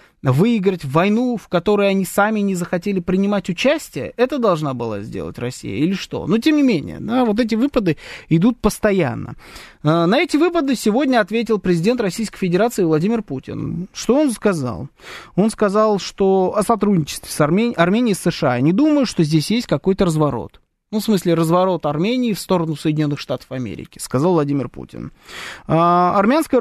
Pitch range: 155-215 Hz